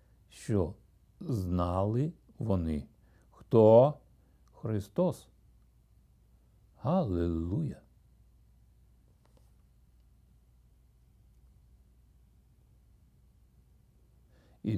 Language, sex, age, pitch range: Ukrainian, male, 60-79, 100-130 Hz